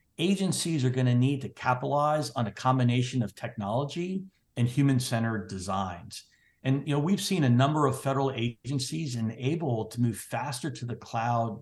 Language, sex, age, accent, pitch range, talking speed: English, male, 60-79, American, 115-145 Hz, 165 wpm